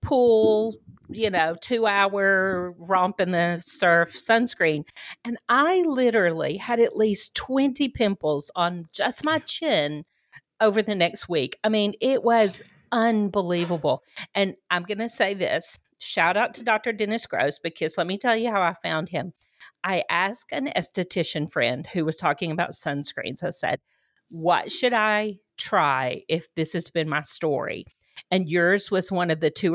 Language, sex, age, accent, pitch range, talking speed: English, female, 50-69, American, 165-220 Hz, 165 wpm